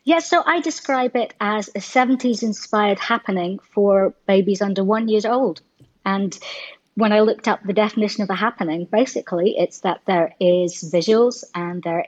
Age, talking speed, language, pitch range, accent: 30-49, 165 wpm, English, 175-210 Hz, British